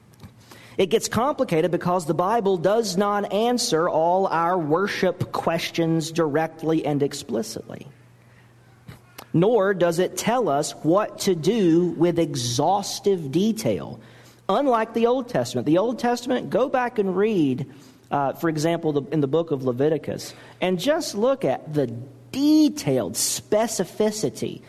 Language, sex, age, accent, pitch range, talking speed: English, male, 40-59, American, 130-200 Hz, 130 wpm